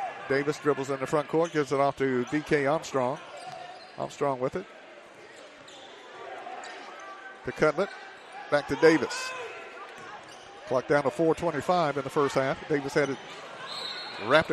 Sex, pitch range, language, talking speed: male, 140-160 Hz, English, 130 wpm